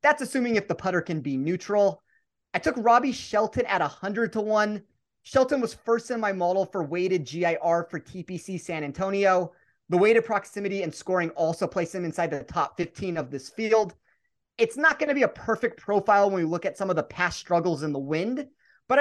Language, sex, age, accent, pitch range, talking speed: English, male, 30-49, American, 165-205 Hz, 210 wpm